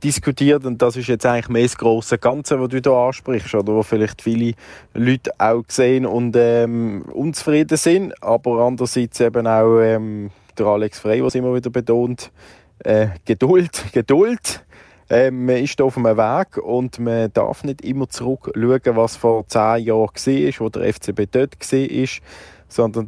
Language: German